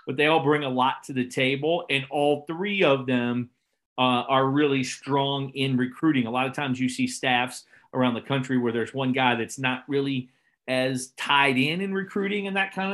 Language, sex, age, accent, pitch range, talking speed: English, male, 40-59, American, 130-160 Hz, 210 wpm